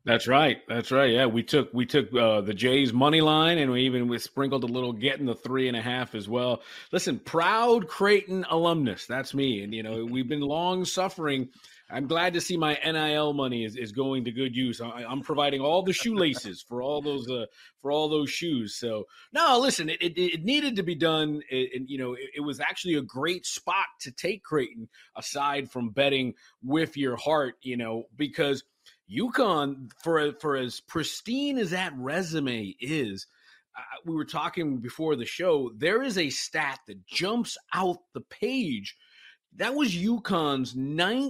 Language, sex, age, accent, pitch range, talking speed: English, male, 30-49, American, 130-185 Hz, 190 wpm